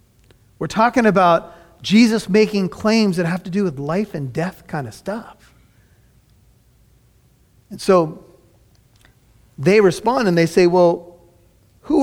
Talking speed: 130 wpm